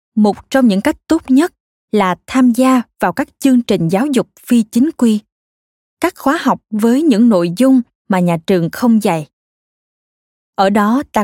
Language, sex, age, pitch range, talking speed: Vietnamese, female, 20-39, 190-245 Hz, 175 wpm